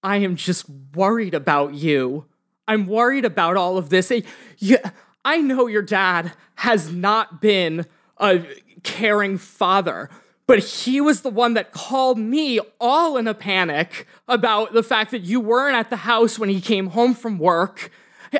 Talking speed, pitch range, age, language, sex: 165 wpm, 210-315 Hz, 20-39, English, male